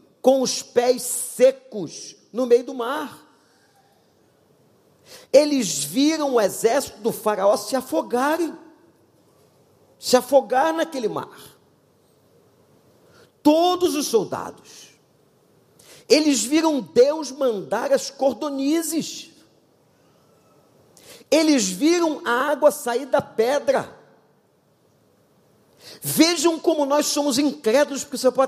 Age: 50-69